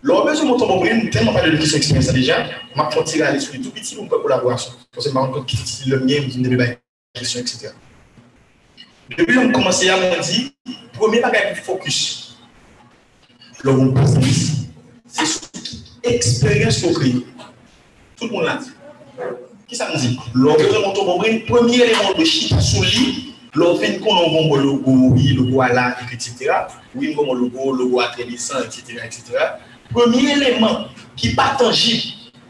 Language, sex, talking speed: French, male, 145 wpm